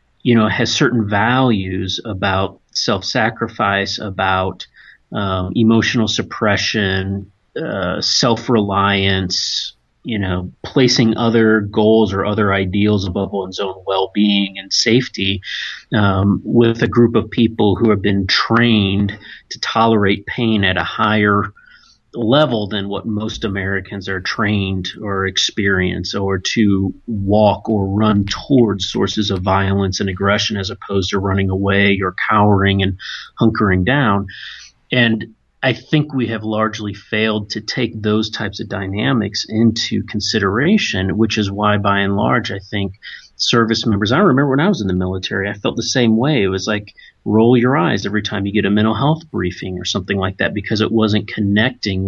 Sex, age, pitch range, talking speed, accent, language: male, 30-49, 100-115 Hz, 155 wpm, American, English